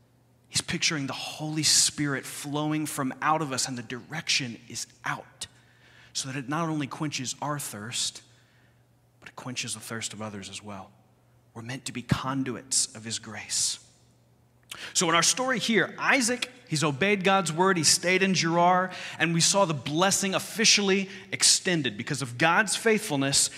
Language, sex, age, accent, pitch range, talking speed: English, male, 30-49, American, 120-170 Hz, 165 wpm